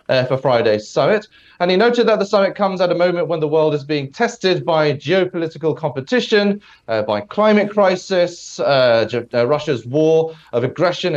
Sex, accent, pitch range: male, British, 130-180 Hz